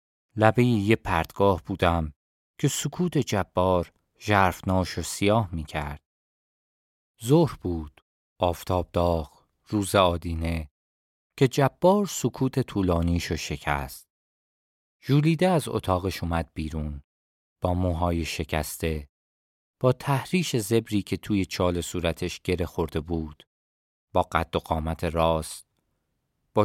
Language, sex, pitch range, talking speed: Persian, male, 80-105 Hz, 105 wpm